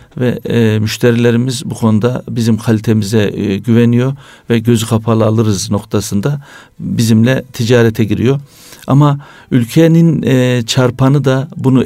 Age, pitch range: 60-79, 115-135 Hz